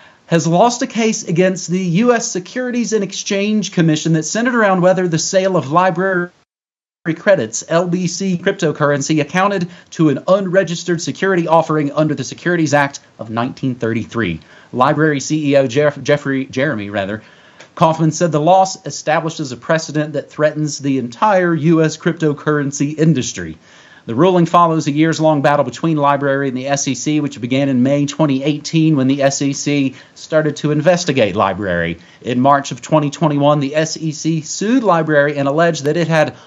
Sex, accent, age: male, American, 30-49